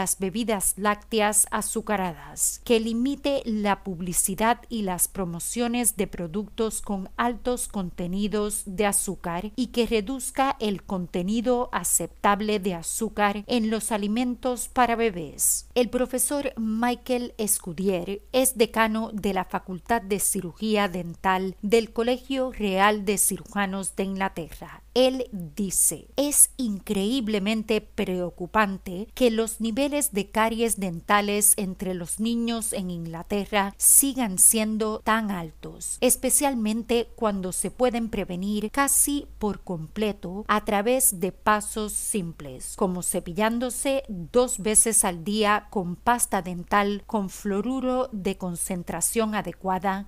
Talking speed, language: 115 wpm, Spanish